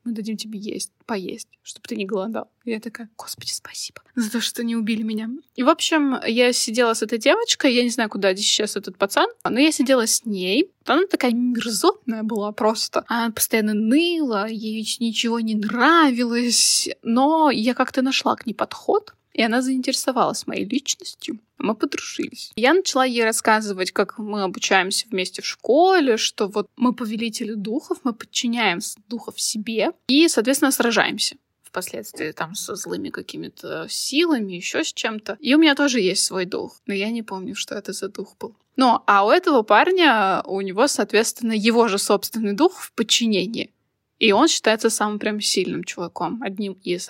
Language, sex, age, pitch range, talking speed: Russian, female, 20-39, 215-280 Hz, 175 wpm